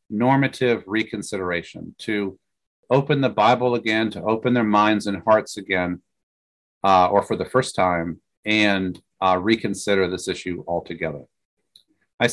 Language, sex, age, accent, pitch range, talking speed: English, male, 40-59, American, 100-130 Hz, 130 wpm